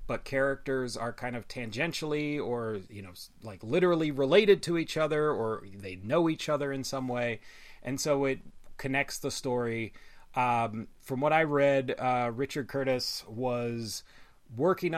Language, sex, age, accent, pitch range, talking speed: English, male, 30-49, American, 115-145 Hz, 155 wpm